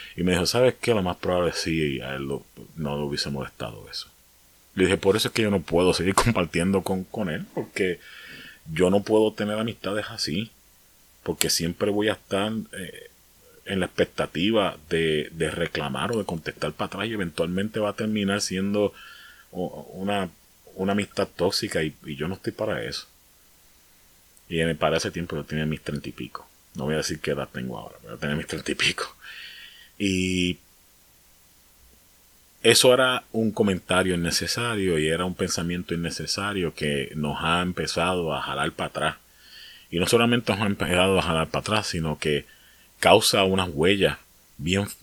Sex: male